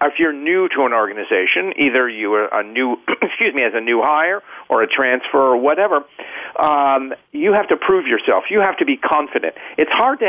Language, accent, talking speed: English, American, 210 wpm